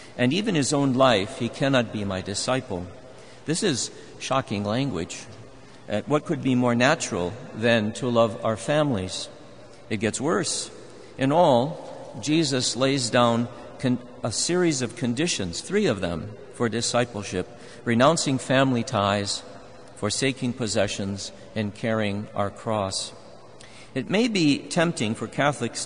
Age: 50-69